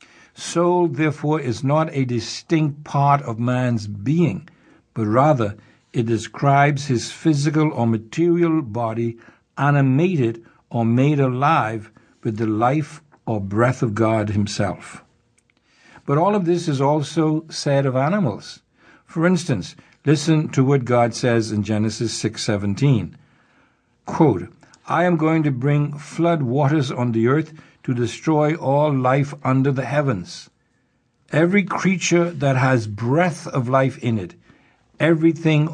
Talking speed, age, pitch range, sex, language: 135 wpm, 60-79, 120-155 Hz, male, English